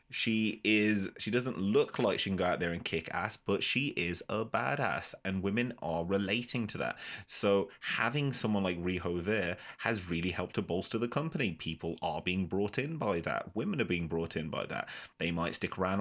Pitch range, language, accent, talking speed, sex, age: 85-110 Hz, English, British, 210 wpm, male, 20-39